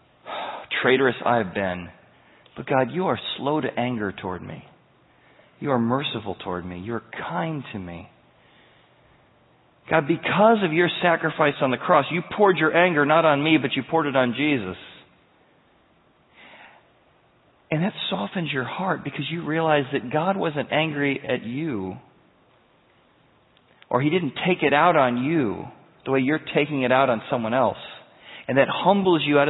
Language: English